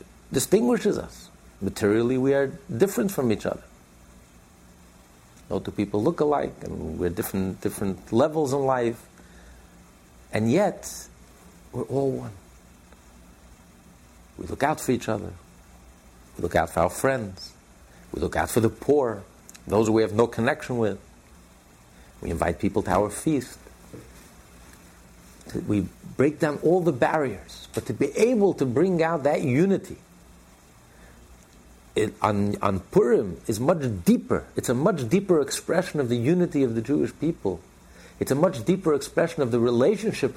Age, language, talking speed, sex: 50-69, English, 145 wpm, male